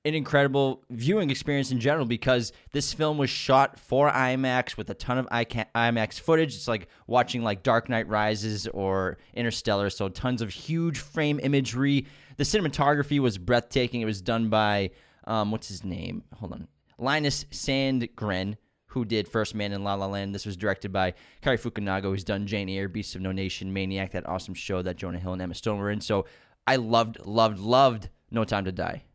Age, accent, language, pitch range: 20-39, American, English, 100-130 Hz